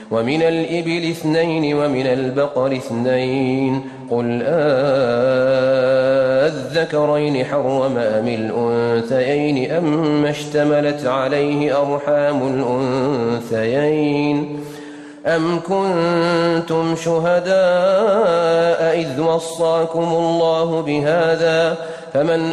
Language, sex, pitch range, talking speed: Arabic, male, 135-165 Hz, 65 wpm